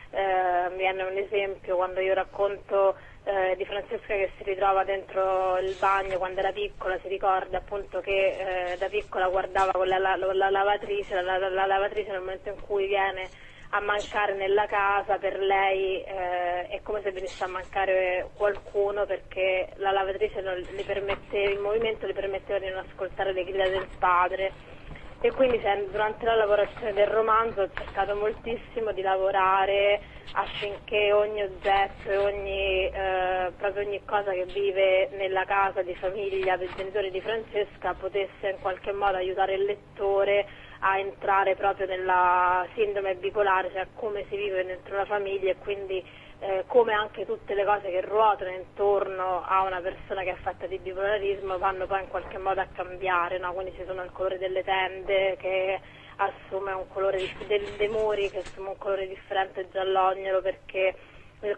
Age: 20-39